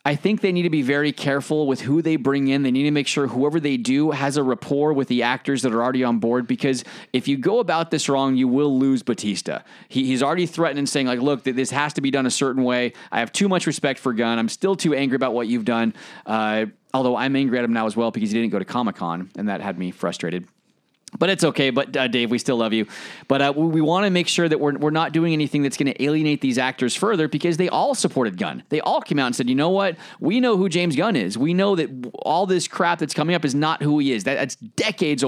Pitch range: 130-160 Hz